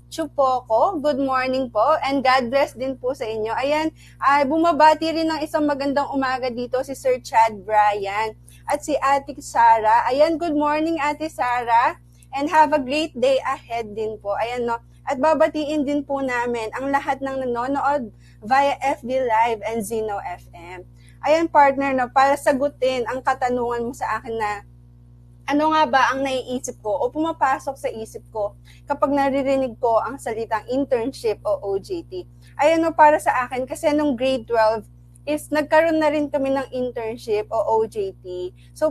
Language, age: Filipino, 20-39